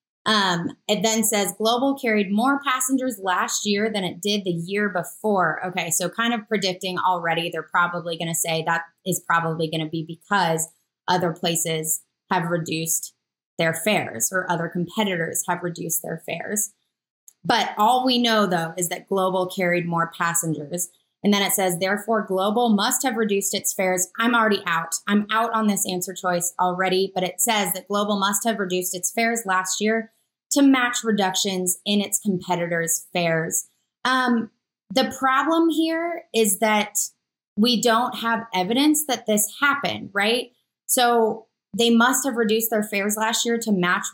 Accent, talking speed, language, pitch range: American, 165 wpm, English, 180-230 Hz